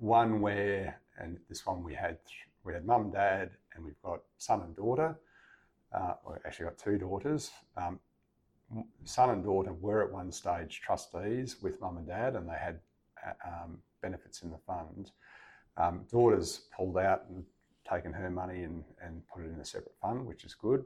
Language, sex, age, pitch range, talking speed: English, male, 50-69, 85-100 Hz, 185 wpm